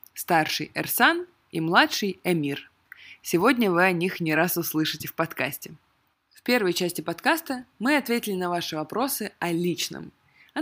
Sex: female